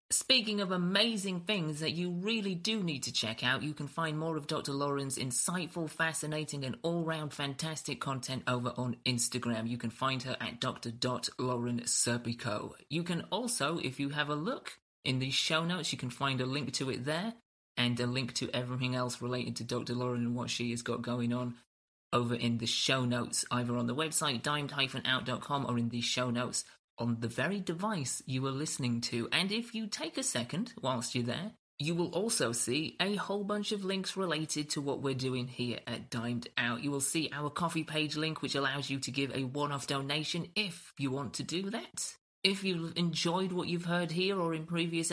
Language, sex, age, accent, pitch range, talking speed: English, male, 30-49, British, 125-170 Hz, 205 wpm